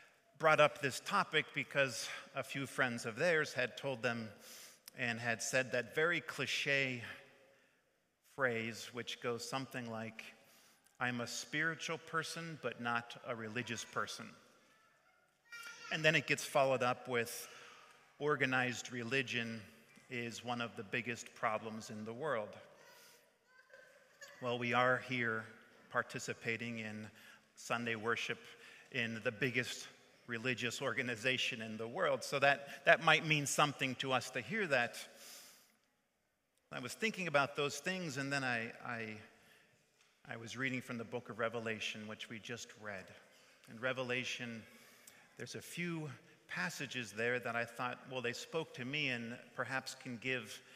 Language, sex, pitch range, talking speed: English, male, 115-140 Hz, 140 wpm